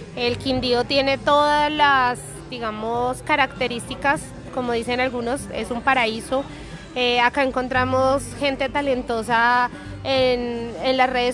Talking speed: 115 wpm